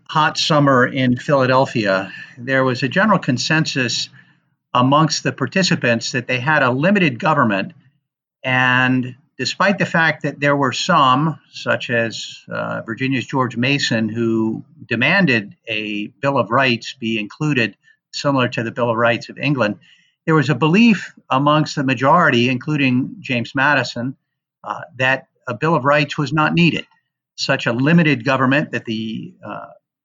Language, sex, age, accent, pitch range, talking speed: English, male, 50-69, American, 120-150 Hz, 150 wpm